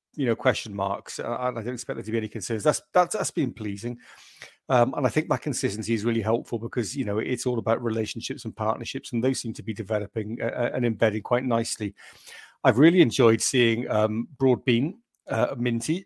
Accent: British